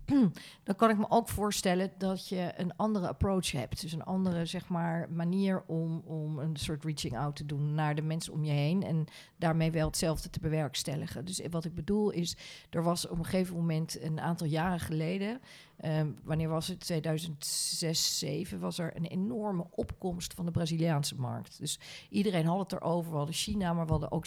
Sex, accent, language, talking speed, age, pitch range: female, Dutch, Dutch, 195 wpm, 40-59, 160-190 Hz